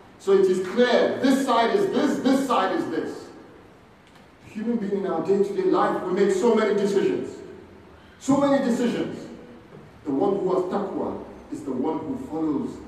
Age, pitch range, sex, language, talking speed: 40-59, 165-220 Hz, male, English, 170 wpm